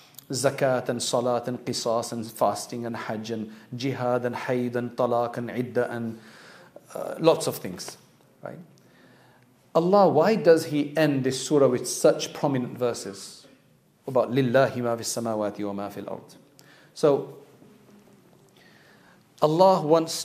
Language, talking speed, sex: English, 135 wpm, male